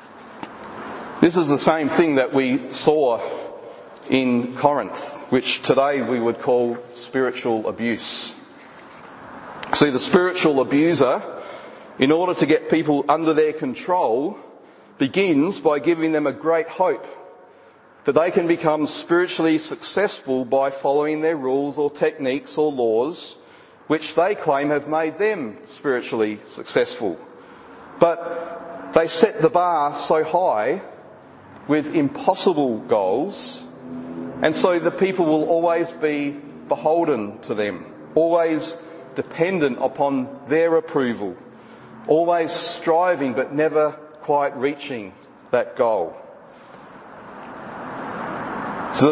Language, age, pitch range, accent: English, 40-59, 140-170 Hz, Australian